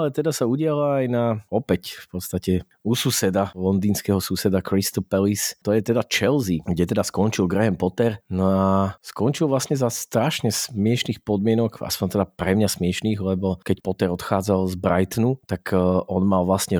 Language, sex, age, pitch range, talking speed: Slovak, male, 30-49, 95-110 Hz, 170 wpm